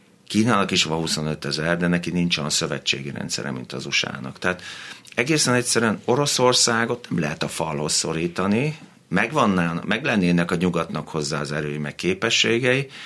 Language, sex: Hungarian, male